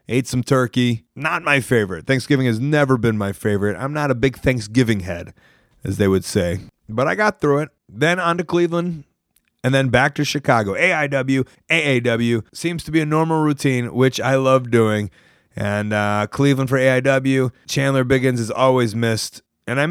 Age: 30-49